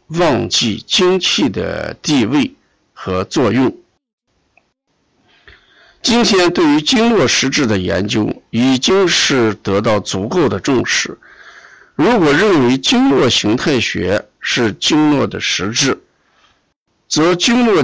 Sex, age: male, 50-69